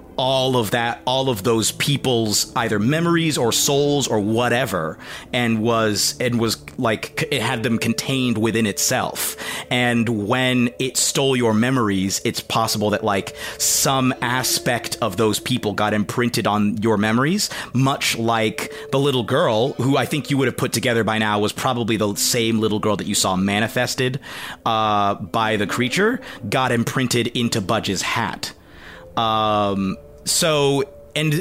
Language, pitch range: English, 110-130 Hz